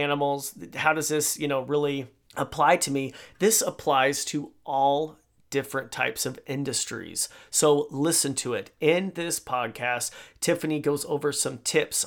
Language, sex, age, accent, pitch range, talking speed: English, male, 30-49, American, 140-175 Hz, 150 wpm